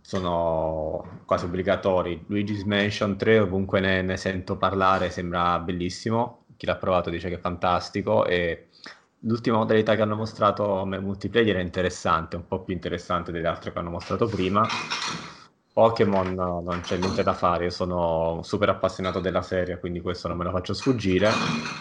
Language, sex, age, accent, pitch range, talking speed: Italian, male, 20-39, native, 90-100 Hz, 160 wpm